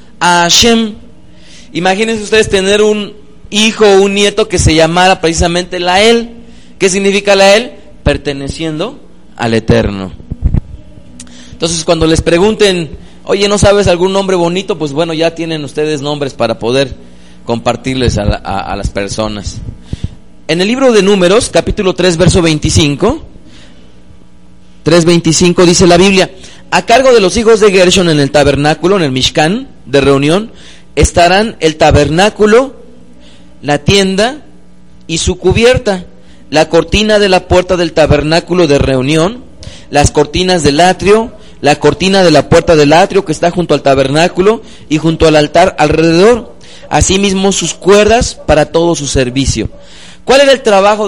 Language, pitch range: Spanish, 145-195 Hz